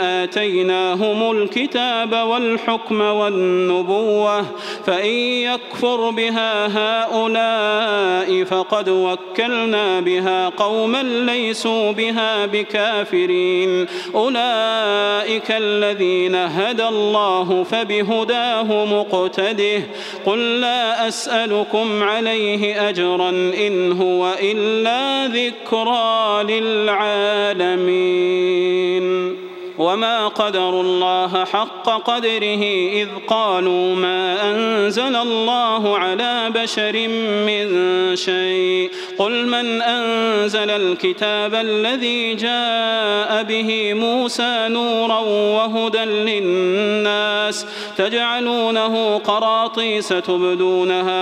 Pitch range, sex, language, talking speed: 185-225 Hz, male, Arabic, 70 wpm